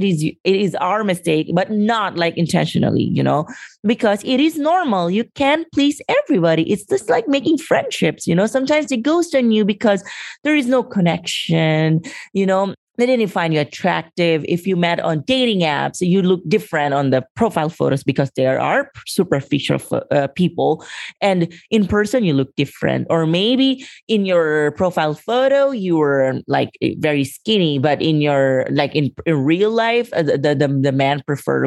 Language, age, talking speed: English, 30-49, 175 wpm